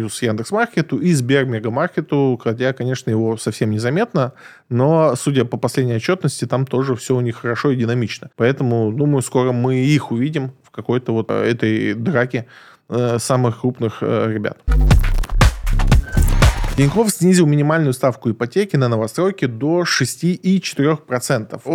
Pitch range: 120-150 Hz